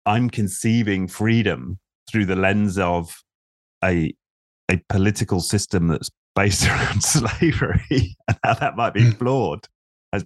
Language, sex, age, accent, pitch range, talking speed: English, male, 30-49, British, 80-100 Hz, 130 wpm